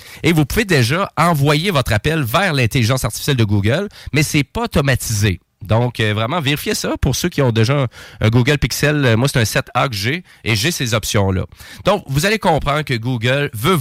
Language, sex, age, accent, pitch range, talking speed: French, male, 30-49, Canadian, 105-135 Hz, 210 wpm